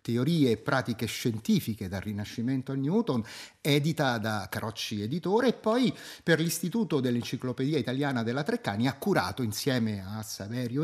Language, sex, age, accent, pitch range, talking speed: Italian, male, 30-49, native, 115-150 Hz, 140 wpm